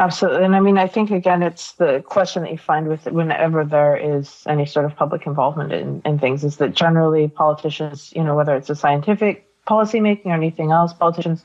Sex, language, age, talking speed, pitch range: female, English, 30-49, 210 wpm, 145-165 Hz